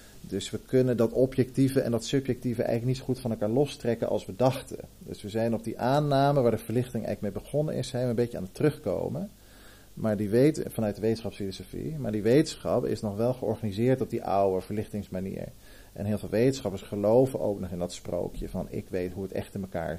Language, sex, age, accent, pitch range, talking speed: Dutch, male, 40-59, Dutch, 100-120 Hz, 220 wpm